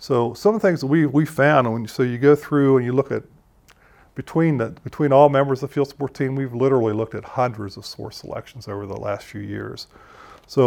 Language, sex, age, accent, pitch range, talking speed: English, male, 40-59, American, 110-135 Hz, 235 wpm